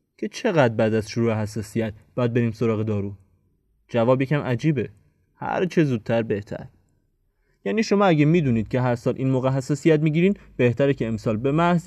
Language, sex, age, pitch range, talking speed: Persian, male, 20-39, 110-145 Hz, 165 wpm